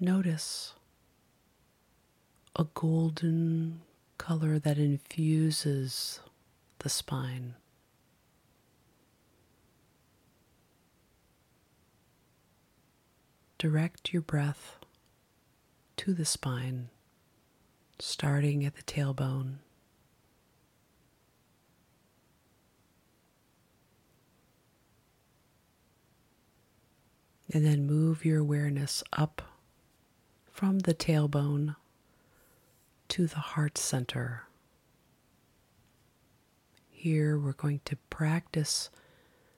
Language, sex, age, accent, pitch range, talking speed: English, female, 30-49, American, 140-160 Hz, 55 wpm